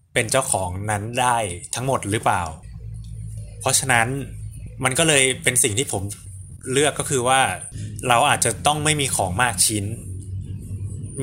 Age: 20-39